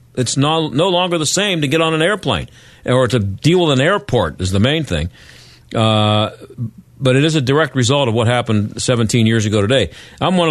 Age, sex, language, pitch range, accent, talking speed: 50-69, male, English, 110-140 Hz, American, 210 wpm